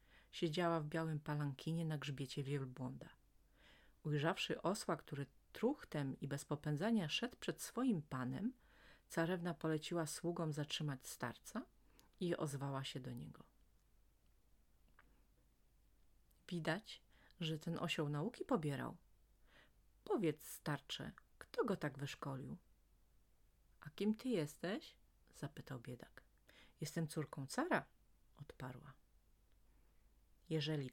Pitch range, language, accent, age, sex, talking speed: 140-175 Hz, Polish, native, 30-49, female, 100 wpm